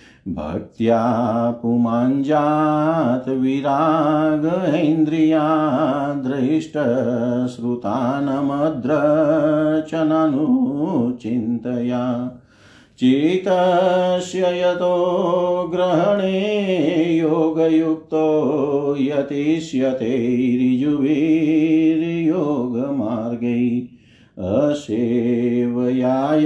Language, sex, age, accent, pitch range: Hindi, male, 50-69, native, 125-180 Hz